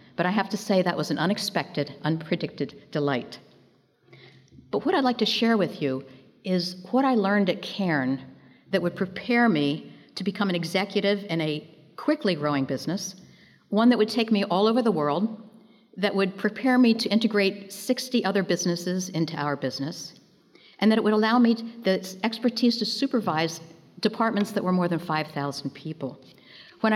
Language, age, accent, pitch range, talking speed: English, 60-79, American, 170-225 Hz, 170 wpm